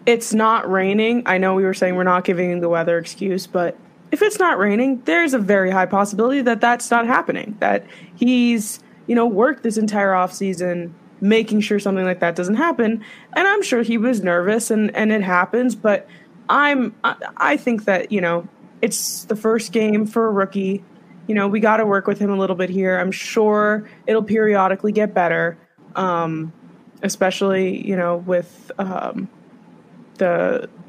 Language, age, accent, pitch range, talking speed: English, 20-39, American, 185-235 Hz, 180 wpm